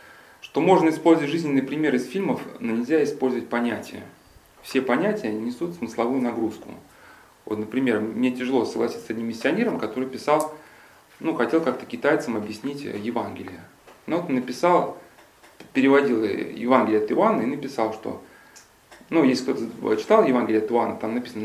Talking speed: 145 wpm